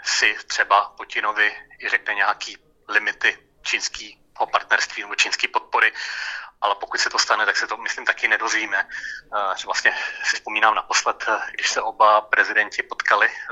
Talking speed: 140 wpm